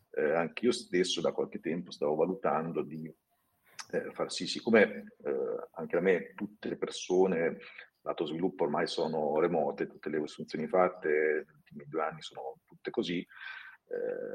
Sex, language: male, Italian